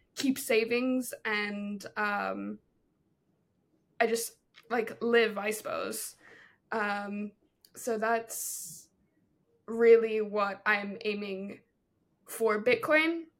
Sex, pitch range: female, 210-245 Hz